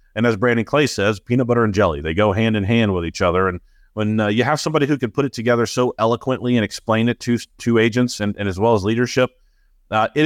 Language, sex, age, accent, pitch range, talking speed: English, male, 40-59, American, 105-130 Hz, 255 wpm